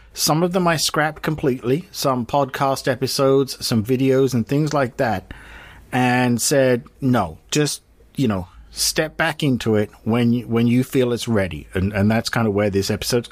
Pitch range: 110-145 Hz